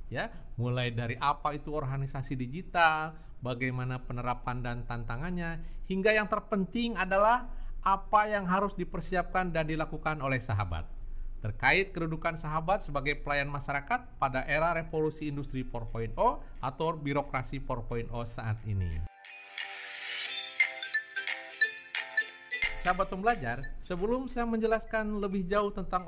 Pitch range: 130-185 Hz